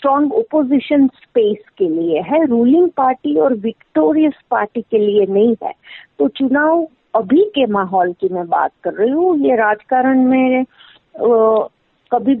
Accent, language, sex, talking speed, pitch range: native, Hindi, female, 145 wpm, 220-285 Hz